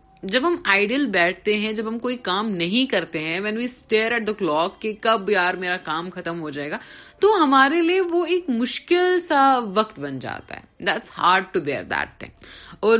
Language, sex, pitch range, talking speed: Urdu, female, 175-275 Hz, 200 wpm